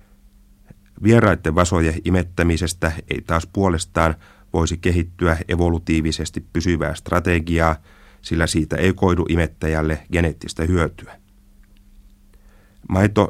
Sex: male